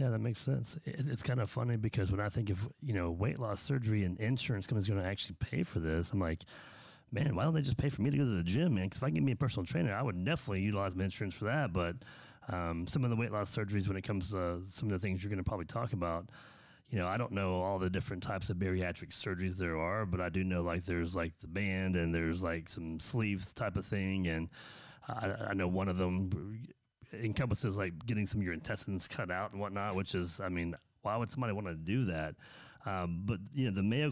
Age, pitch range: 30-49, 90-115 Hz